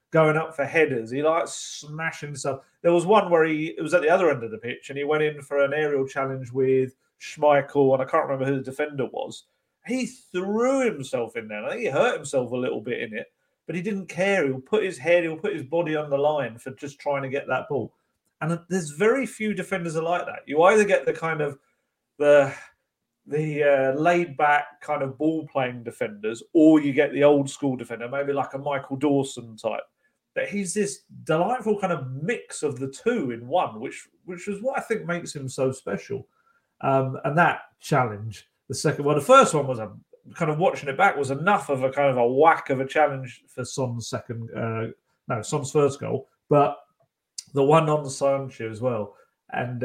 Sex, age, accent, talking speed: male, 40-59, British, 215 wpm